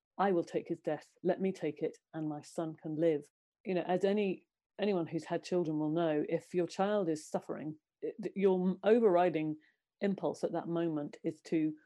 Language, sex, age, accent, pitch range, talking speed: English, female, 40-59, British, 155-175 Hz, 180 wpm